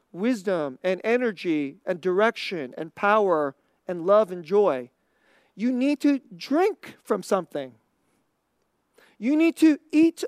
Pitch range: 190-255 Hz